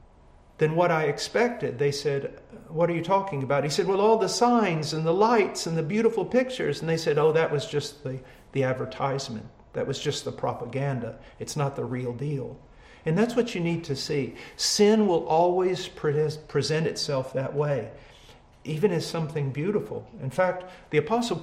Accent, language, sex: American, English, male